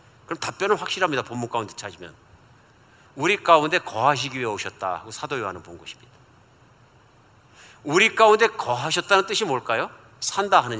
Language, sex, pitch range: Korean, male, 115-155 Hz